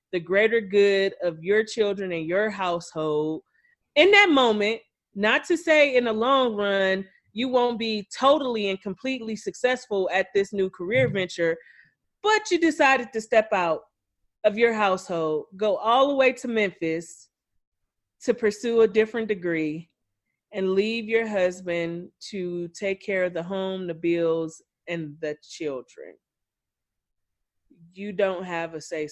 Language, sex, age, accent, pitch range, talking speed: English, female, 30-49, American, 155-210 Hz, 145 wpm